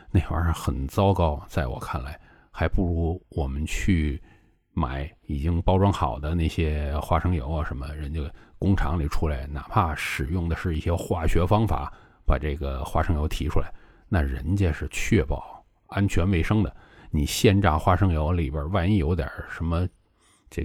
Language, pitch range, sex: Chinese, 75-95 Hz, male